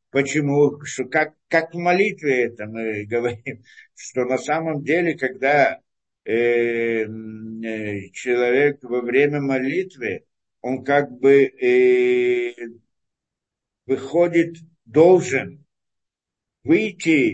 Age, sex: 60-79, male